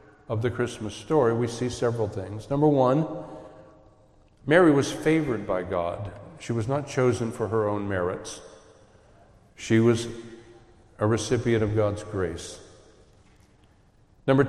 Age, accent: 50-69, American